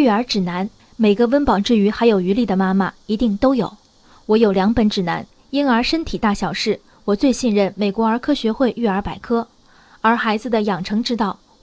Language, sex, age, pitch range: Chinese, female, 20-39, 205-255 Hz